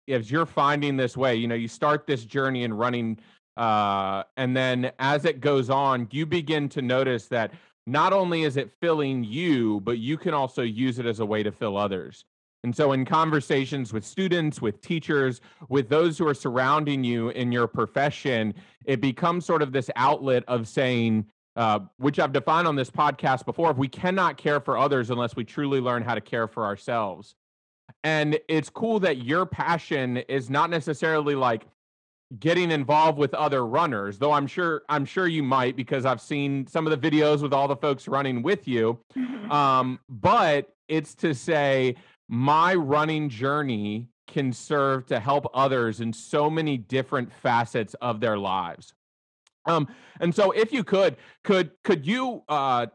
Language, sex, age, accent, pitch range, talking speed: English, male, 30-49, American, 125-155 Hz, 180 wpm